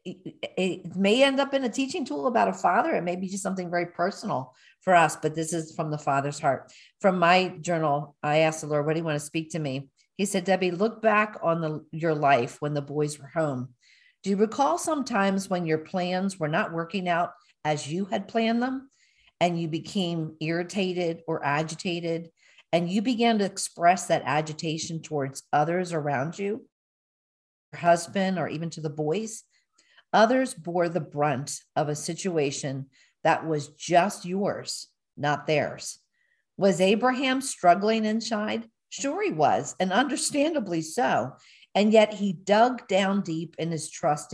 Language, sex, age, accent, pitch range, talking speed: English, female, 50-69, American, 155-205 Hz, 170 wpm